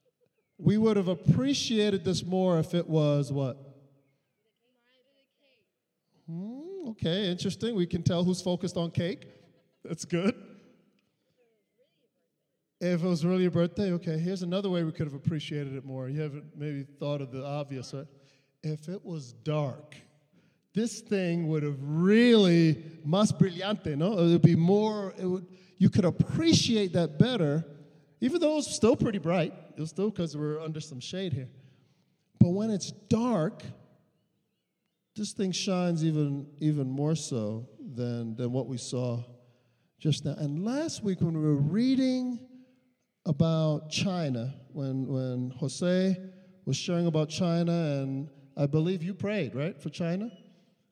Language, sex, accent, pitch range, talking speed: English, male, American, 150-195 Hz, 145 wpm